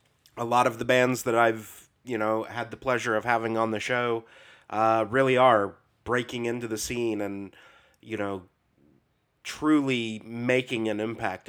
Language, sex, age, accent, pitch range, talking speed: English, male, 30-49, American, 100-125 Hz, 160 wpm